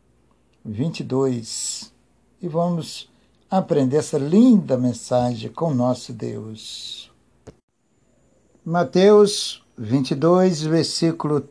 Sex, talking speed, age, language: male, 75 wpm, 60-79, Portuguese